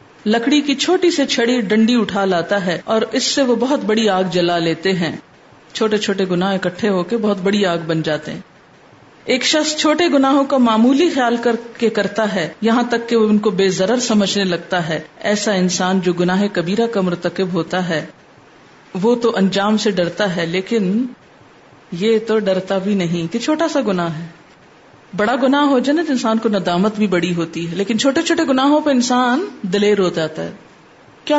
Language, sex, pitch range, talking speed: Urdu, female, 185-245 Hz, 195 wpm